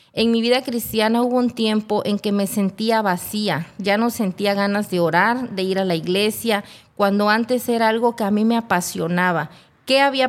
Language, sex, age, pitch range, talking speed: Spanish, female, 30-49, 190-230 Hz, 200 wpm